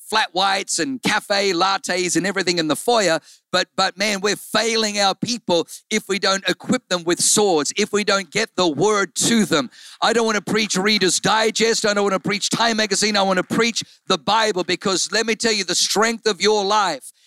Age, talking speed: 50-69, 215 wpm